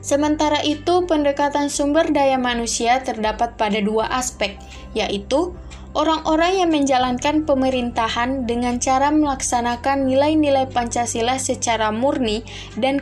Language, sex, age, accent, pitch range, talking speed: Indonesian, female, 20-39, native, 225-280 Hz, 105 wpm